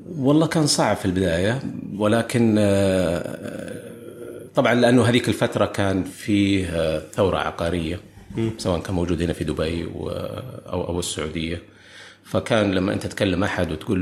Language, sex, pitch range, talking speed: Arabic, male, 90-110 Hz, 120 wpm